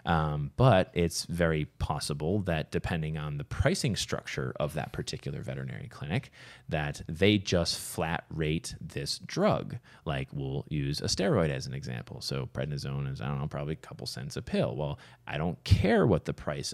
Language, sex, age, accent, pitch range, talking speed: English, male, 30-49, American, 75-115 Hz, 180 wpm